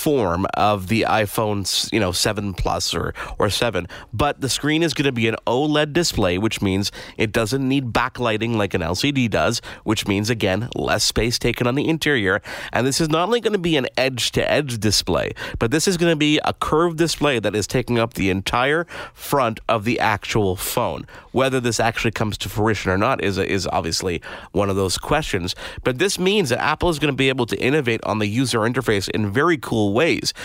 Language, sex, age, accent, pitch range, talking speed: English, male, 30-49, American, 105-150 Hz, 215 wpm